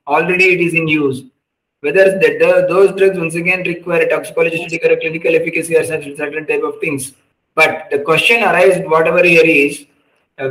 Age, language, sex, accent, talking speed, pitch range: 50-69, English, male, Indian, 175 wpm, 160-195 Hz